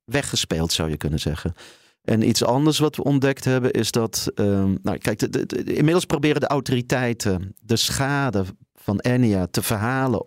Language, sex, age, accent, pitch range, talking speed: Dutch, male, 40-59, Dutch, 95-130 Hz, 175 wpm